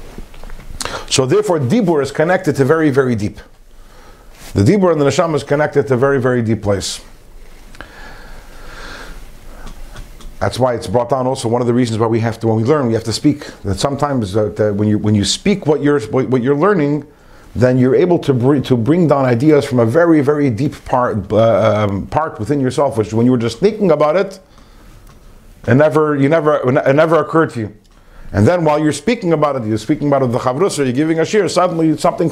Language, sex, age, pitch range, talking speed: English, male, 50-69, 130-175 Hz, 210 wpm